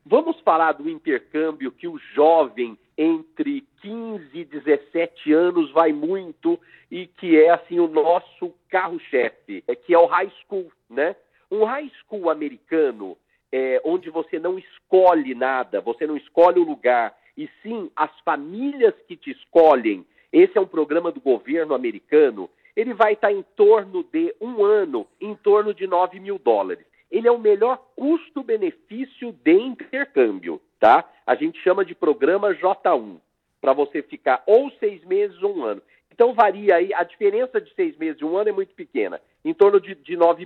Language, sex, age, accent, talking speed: Portuguese, male, 50-69, Brazilian, 170 wpm